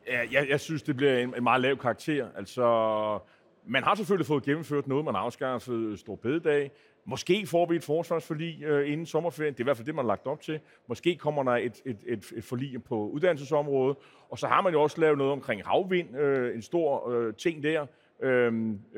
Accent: native